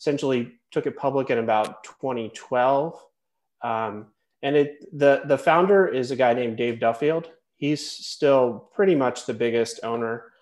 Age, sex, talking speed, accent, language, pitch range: 30-49, male, 150 wpm, American, English, 120-150 Hz